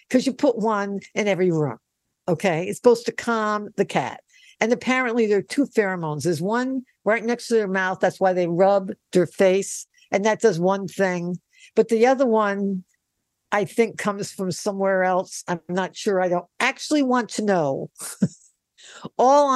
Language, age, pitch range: English, 60-79, 165-235 Hz